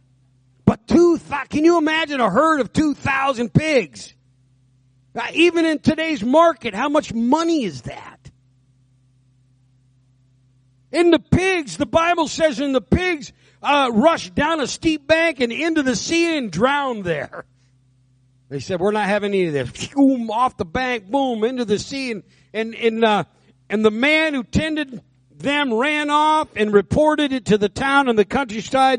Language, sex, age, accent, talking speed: English, male, 50-69, American, 160 wpm